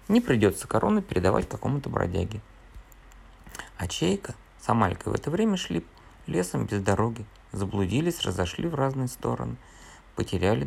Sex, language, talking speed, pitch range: male, Russian, 130 wpm, 90-120 Hz